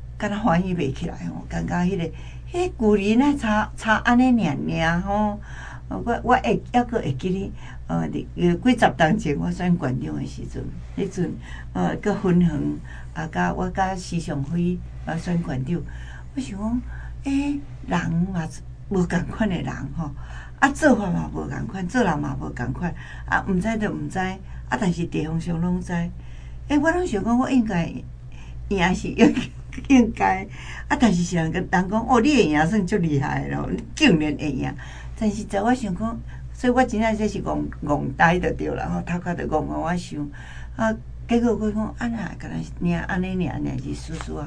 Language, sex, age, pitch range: Chinese, female, 60-79, 135-205 Hz